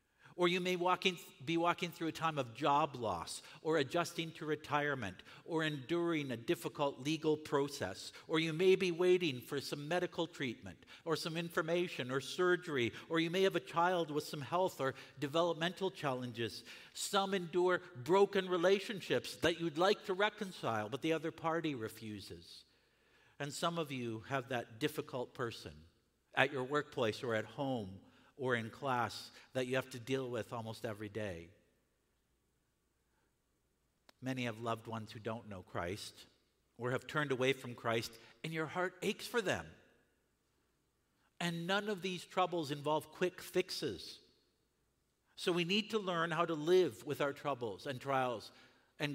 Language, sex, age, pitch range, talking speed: English, male, 50-69, 120-175 Hz, 155 wpm